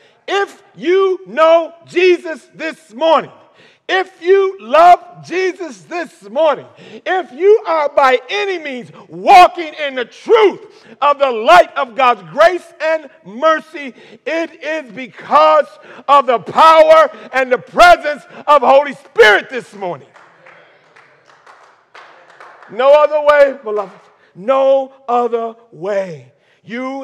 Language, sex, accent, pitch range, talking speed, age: English, male, American, 215-345 Hz, 115 wpm, 50-69